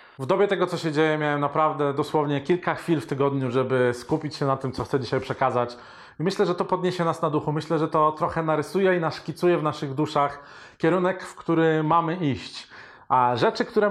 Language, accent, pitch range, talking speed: Polish, native, 135-165 Hz, 205 wpm